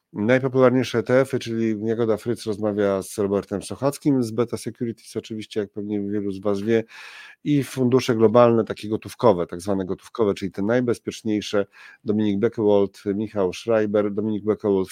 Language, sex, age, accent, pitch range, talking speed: Polish, male, 40-59, native, 105-130 Hz, 145 wpm